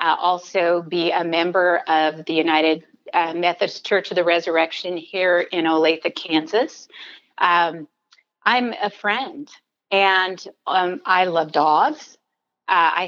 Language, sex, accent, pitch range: English, female, American, 155-195 Hz